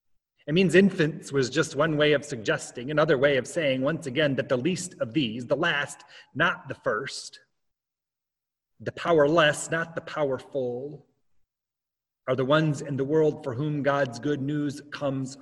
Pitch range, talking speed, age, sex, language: 125-165 Hz, 165 wpm, 30-49, male, English